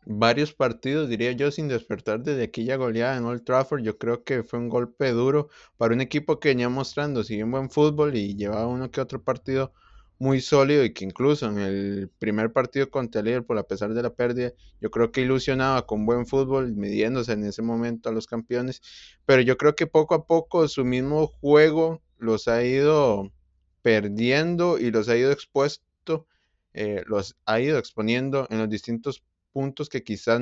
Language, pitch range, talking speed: Spanish, 110-135 Hz, 190 wpm